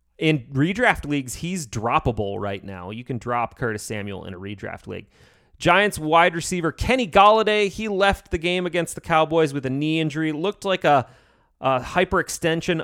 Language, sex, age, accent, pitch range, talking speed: English, male, 30-49, American, 125-165 Hz, 175 wpm